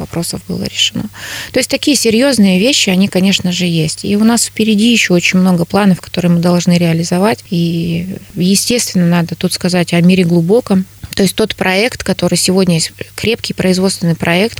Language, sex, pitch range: Russian, female, 175-205 Hz